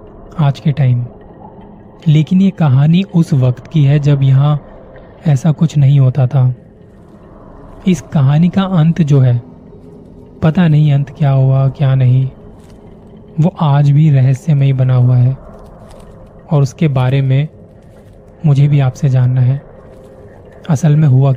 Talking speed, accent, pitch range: 140 wpm, native, 130-155 Hz